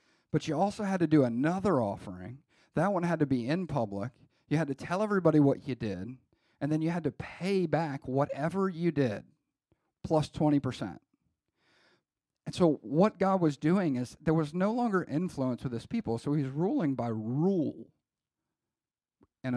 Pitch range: 115-160 Hz